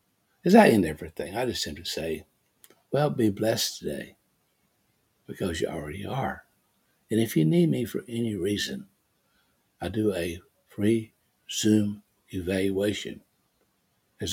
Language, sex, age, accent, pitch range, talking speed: English, male, 60-79, American, 95-110 Hz, 130 wpm